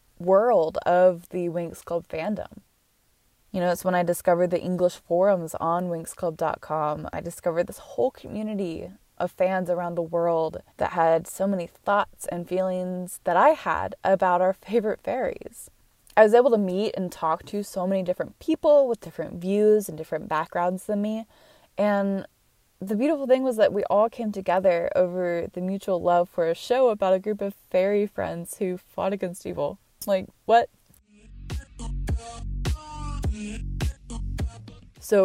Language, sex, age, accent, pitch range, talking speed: English, female, 20-39, American, 170-200 Hz, 155 wpm